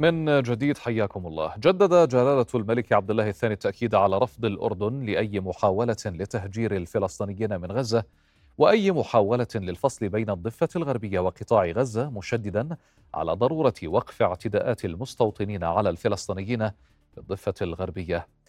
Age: 40-59